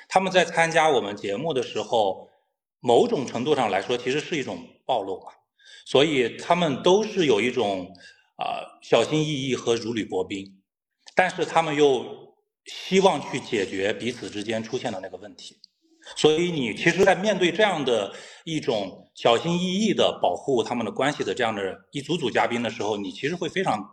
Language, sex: Chinese, male